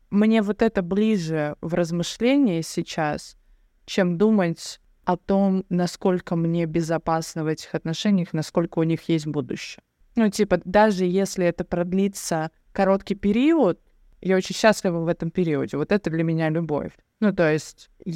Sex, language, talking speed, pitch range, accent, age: female, Russian, 145 wpm, 160-195 Hz, native, 20-39